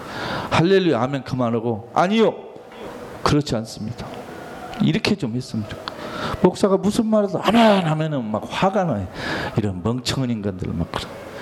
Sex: male